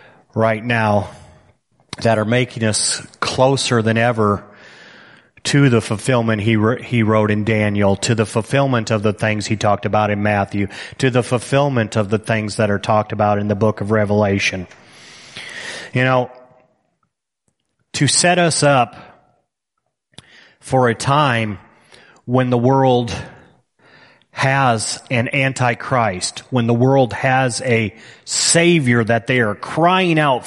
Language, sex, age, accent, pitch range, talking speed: English, male, 30-49, American, 110-140 Hz, 135 wpm